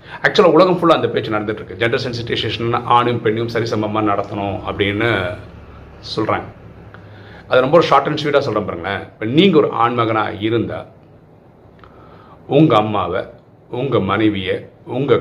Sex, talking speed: male, 120 wpm